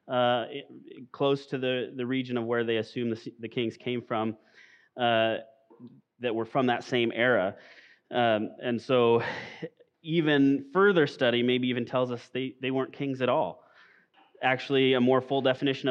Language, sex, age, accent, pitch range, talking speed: English, male, 30-49, American, 120-145 Hz, 165 wpm